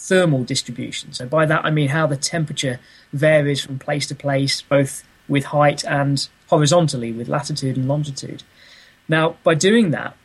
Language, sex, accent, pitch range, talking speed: English, male, British, 140-165 Hz, 165 wpm